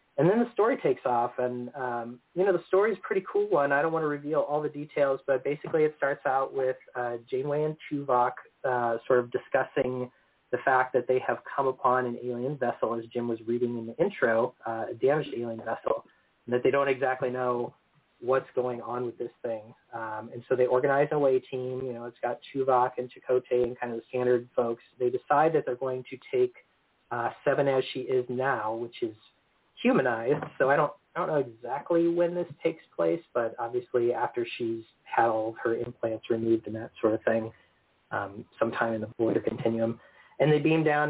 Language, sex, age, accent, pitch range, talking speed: English, male, 30-49, American, 120-150 Hz, 210 wpm